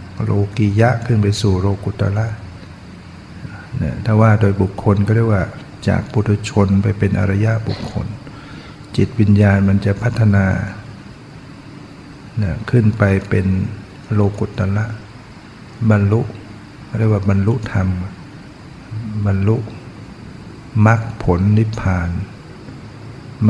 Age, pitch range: 60-79, 100-115 Hz